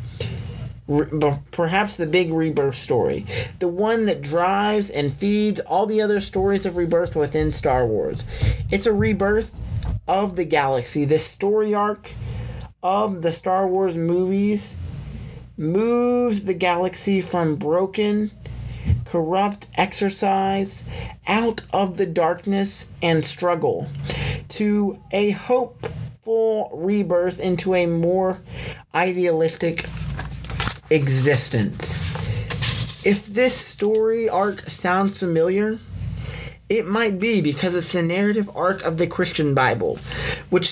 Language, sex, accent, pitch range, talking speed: English, male, American, 140-200 Hz, 110 wpm